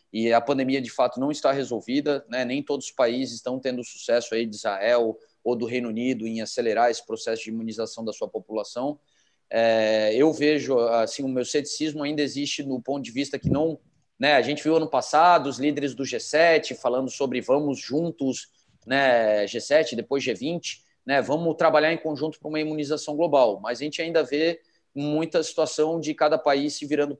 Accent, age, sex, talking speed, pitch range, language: Brazilian, 20-39, male, 190 wpm, 125-150 Hz, Portuguese